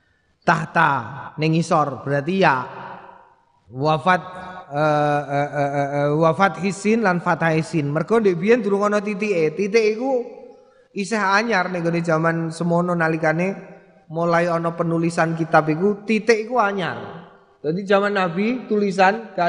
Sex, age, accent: male, 30-49, native